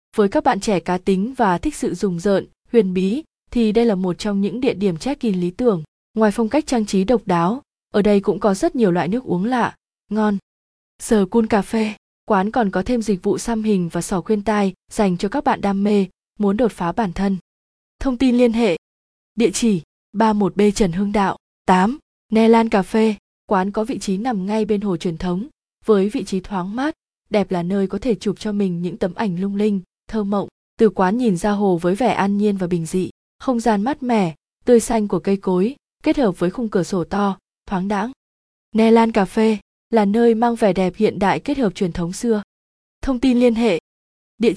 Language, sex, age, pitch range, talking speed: Vietnamese, female, 20-39, 190-230 Hz, 225 wpm